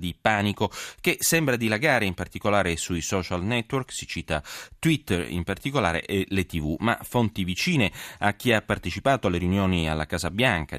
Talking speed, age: 165 wpm, 30-49